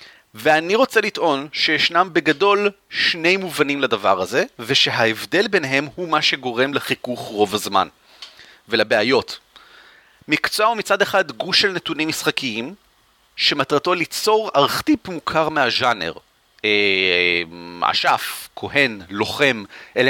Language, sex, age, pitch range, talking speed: Hebrew, male, 30-49, 130-200 Hz, 105 wpm